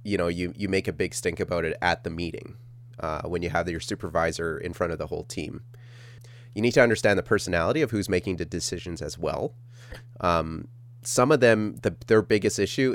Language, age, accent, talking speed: English, 30-49, American, 215 wpm